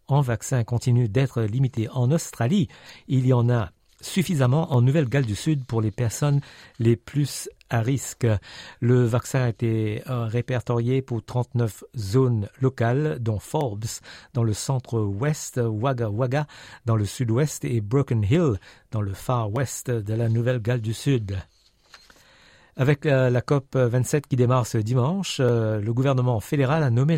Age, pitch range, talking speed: 50-69, 115-140 Hz, 145 wpm